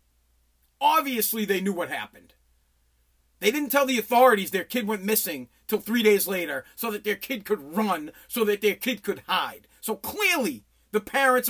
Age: 40-59